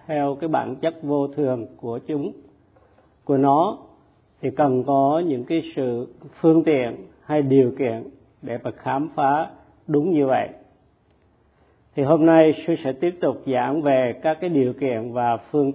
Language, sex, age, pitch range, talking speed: Vietnamese, male, 50-69, 120-155 Hz, 165 wpm